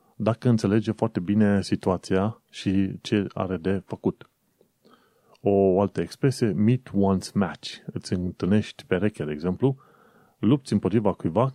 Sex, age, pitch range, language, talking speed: male, 30-49, 95-115 Hz, Romanian, 125 wpm